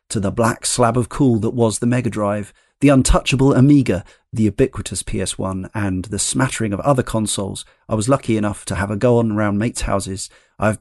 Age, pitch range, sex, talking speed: 40-59, 100-130 Hz, male, 200 wpm